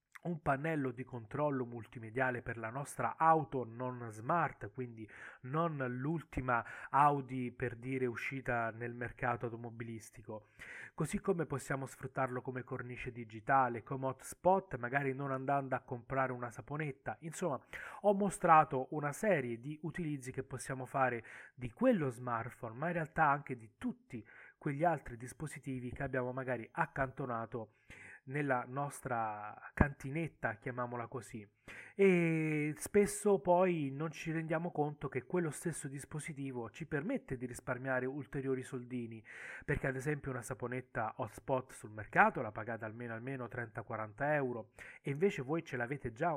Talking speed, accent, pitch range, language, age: 135 wpm, native, 120-150 Hz, Italian, 30-49